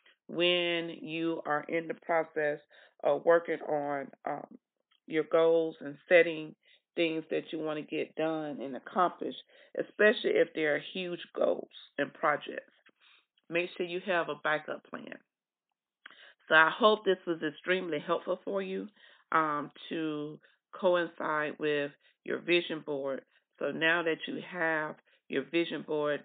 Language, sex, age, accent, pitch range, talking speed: English, female, 40-59, American, 150-170 Hz, 140 wpm